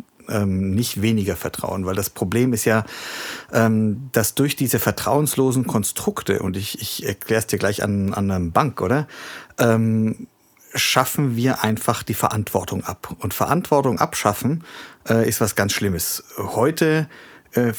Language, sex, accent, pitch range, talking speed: German, male, German, 105-130 Hz, 145 wpm